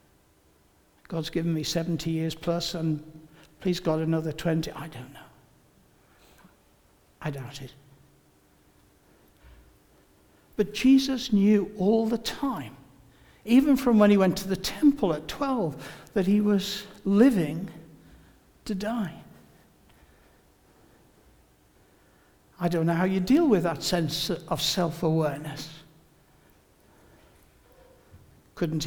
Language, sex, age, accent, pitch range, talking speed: English, male, 60-79, British, 135-185 Hz, 105 wpm